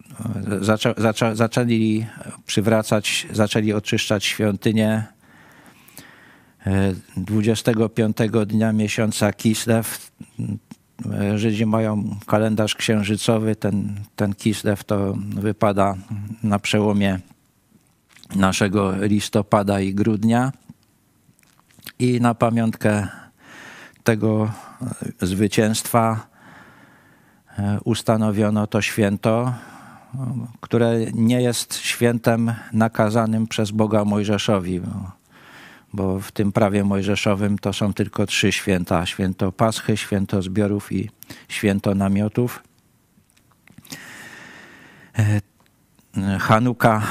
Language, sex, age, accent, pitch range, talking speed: Polish, male, 50-69, native, 105-115 Hz, 75 wpm